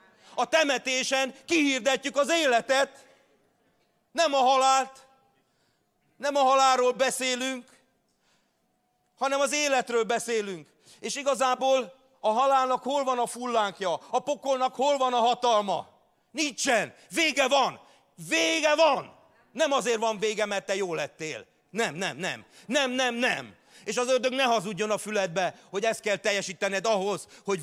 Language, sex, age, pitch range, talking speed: English, male, 40-59, 200-260 Hz, 135 wpm